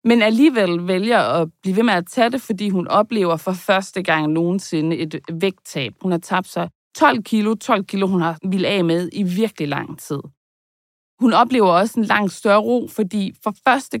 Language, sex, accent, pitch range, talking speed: Danish, female, native, 170-225 Hz, 195 wpm